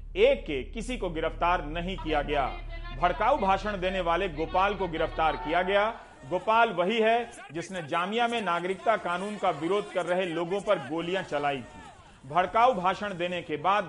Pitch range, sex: 165-220 Hz, male